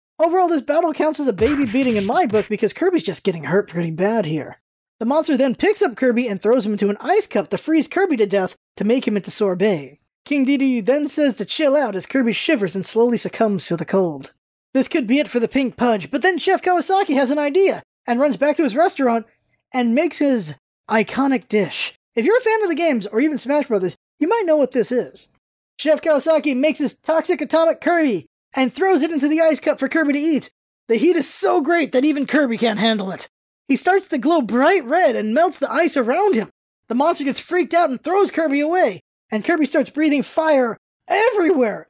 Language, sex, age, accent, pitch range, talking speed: English, male, 20-39, American, 225-325 Hz, 225 wpm